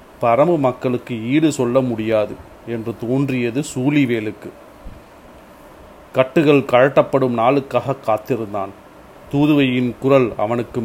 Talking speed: 85 wpm